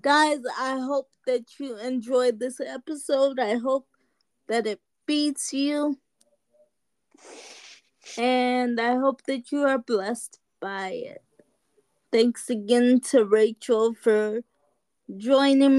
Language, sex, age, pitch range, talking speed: English, female, 20-39, 240-275 Hz, 110 wpm